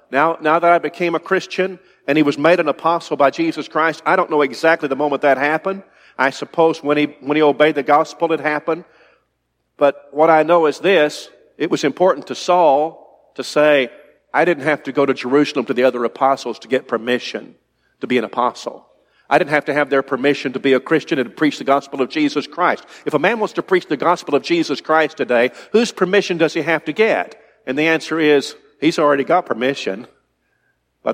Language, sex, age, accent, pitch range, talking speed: English, male, 50-69, American, 140-170 Hz, 220 wpm